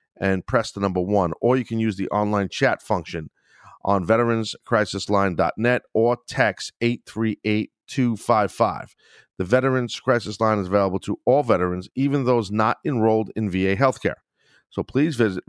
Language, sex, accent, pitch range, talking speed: English, male, American, 95-120 Hz, 145 wpm